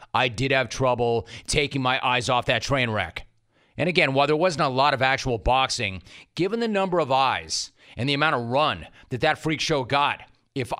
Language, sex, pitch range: English, male, 120-150 Hz